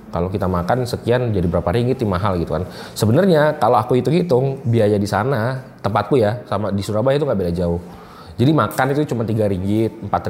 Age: 20-39